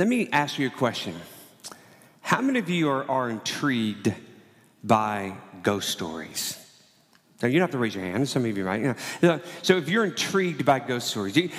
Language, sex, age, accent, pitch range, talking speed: English, male, 40-59, American, 110-140 Hz, 200 wpm